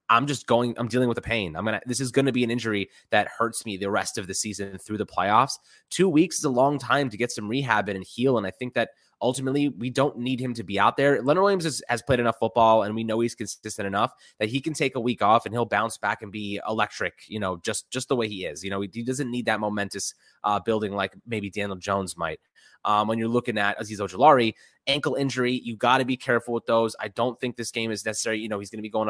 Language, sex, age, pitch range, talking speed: English, male, 20-39, 105-125 Hz, 275 wpm